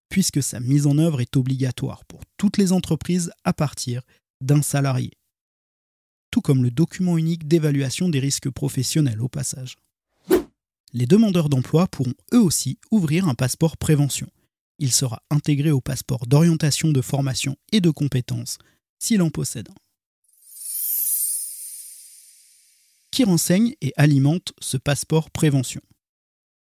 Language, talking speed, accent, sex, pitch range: French, 130 wpm, French, male, 130-170 Hz